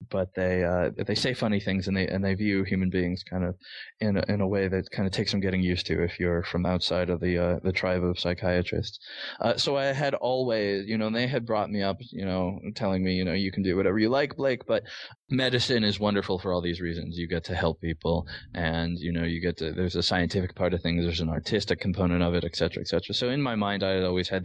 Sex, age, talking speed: male, 20-39, 270 wpm